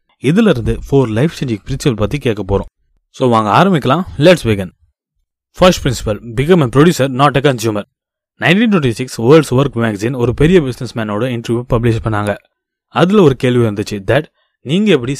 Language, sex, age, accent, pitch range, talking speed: Tamil, male, 20-39, native, 115-145 Hz, 150 wpm